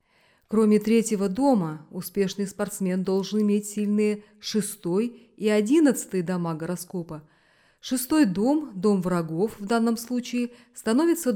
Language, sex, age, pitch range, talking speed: Russian, female, 30-49, 180-240 Hz, 110 wpm